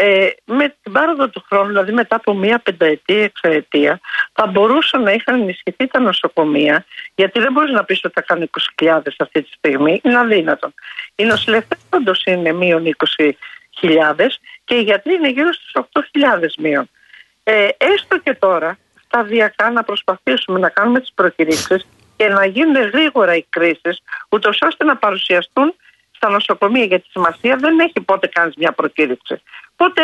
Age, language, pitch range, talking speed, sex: 50-69, Greek, 185-265 Hz, 160 wpm, female